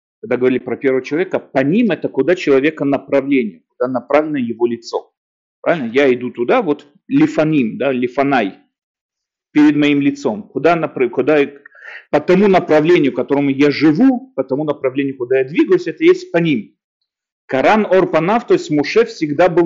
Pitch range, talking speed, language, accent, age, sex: 125-180 Hz, 155 wpm, Russian, native, 40-59, male